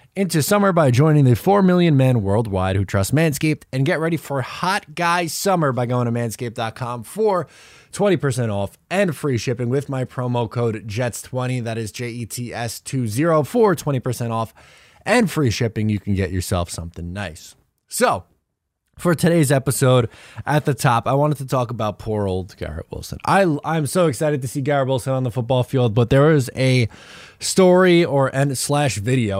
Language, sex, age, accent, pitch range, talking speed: English, male, 20-39, American, 105-145 Hz, 180 wpm